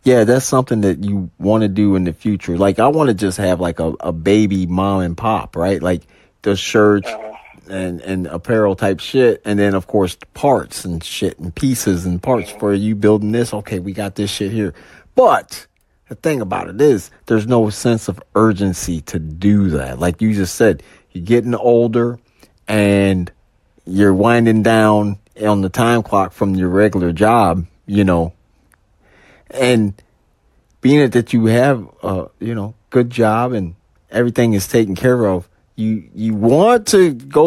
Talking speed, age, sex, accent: 180 wpm, 30-49, male, American